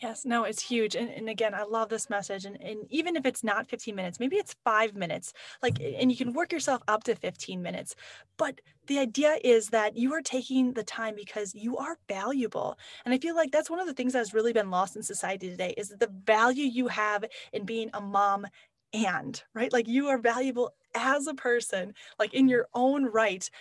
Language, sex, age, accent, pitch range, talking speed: English, female, 10-29, American, 210-260 Hz, 220 wpm